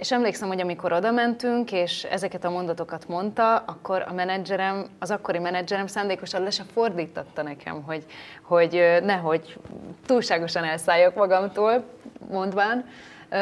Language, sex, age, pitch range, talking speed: Hungarian, female, 30-49, 160-195 Hz, 130 wpm